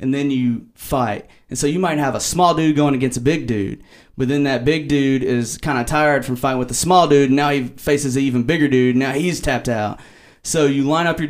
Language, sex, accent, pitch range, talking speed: English, male, American, 120-145 Hz, 260 wpm